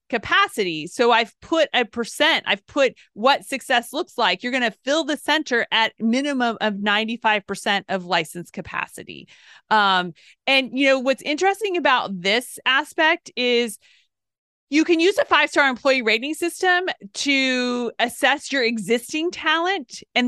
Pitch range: 210-280 Hz